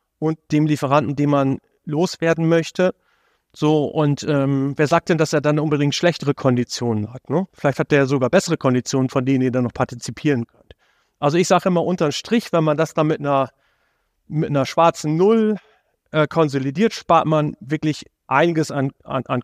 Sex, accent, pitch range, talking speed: male, German, 135-160 Hz, 180 wpm